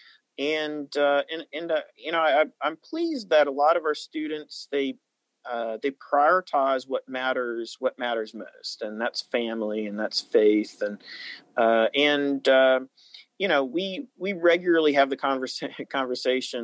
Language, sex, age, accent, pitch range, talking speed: English, male, 40-59, American, 110-135 Hz, 155 wpm